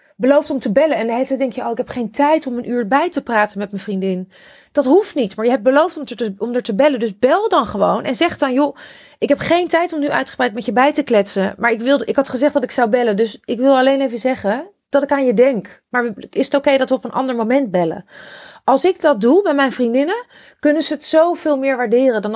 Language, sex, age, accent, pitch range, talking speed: Dutch, female, 30-49, Dutch, 220-285 Hz, 265 wpm